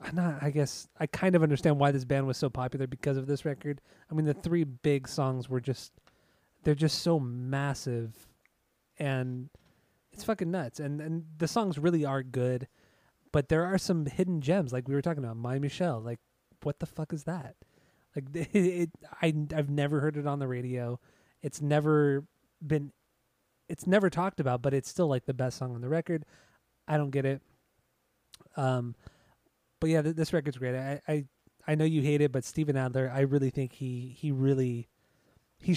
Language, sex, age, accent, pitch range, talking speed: English, male, 20-39, American, 130-155 Hz, 190 wpm